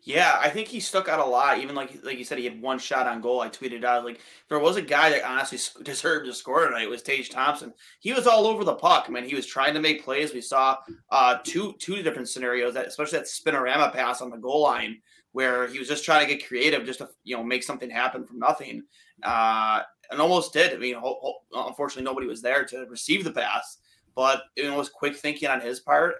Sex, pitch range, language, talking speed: male, 125-180 Hz, English, 240 wpm